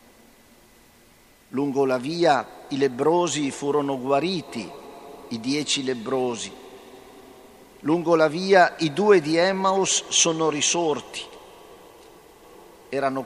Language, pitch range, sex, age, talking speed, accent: Italian, 135-165 Hz, male, 50-69, 90 wpm, native